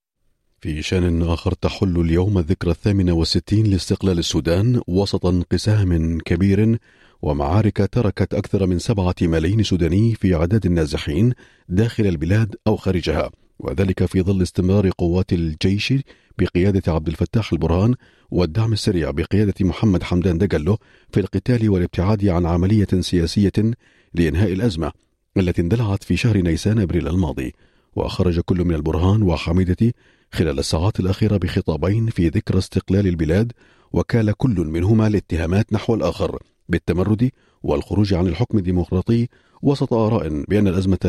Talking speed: 125 wpm